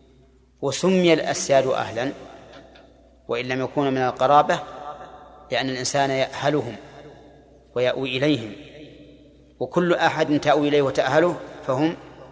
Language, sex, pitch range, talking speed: Arabic, male, 130-155 Hz, 95 wpm